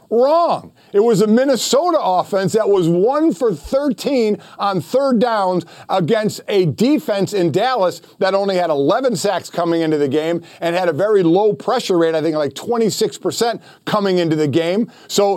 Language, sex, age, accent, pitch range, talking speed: English, male, 50-69, American, 170-230 Hz, 165 wpm